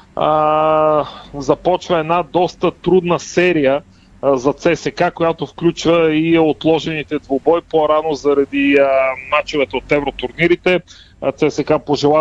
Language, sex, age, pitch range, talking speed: Bulgarian, male, 30-49, 145-175 Hz, 105 wpm